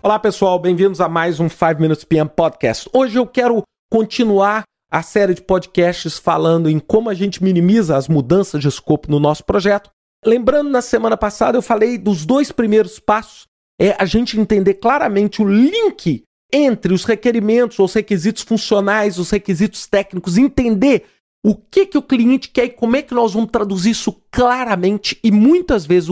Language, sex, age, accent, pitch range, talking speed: Portuguese, male, 40-59, Brazilian, 190-265 Hz, 175 wpm